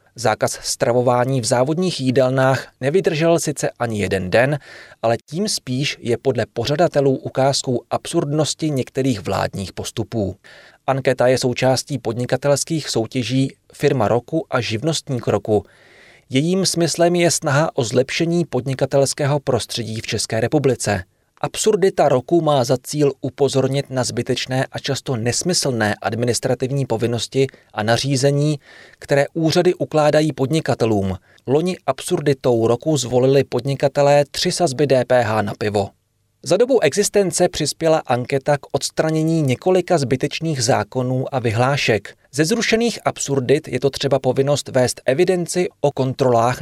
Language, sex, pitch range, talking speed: Czech, male, 120-150 Hz, 120 wpm